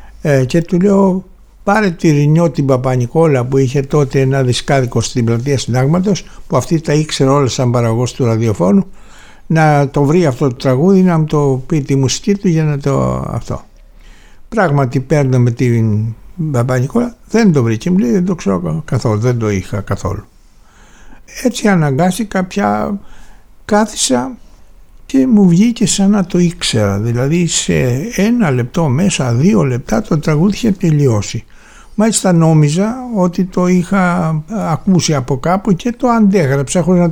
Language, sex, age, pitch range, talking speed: Greek, male, 60-79, 125-185 Hz, 150 wpm